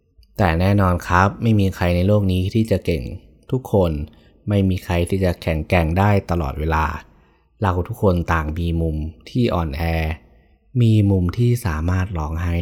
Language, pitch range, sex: Thai, 85-105 Hz, male